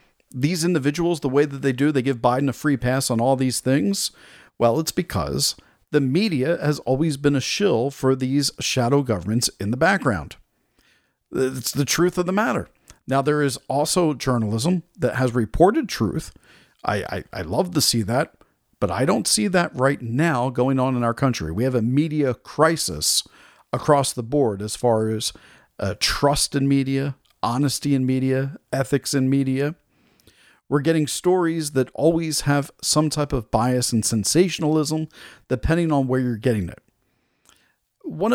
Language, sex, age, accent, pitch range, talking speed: English, male, 50-69, American, 125-155 Hz, 170 wpm